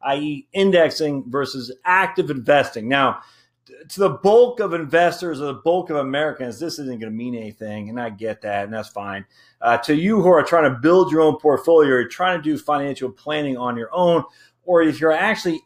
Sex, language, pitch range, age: male, English, 120-170 Hz, 30-49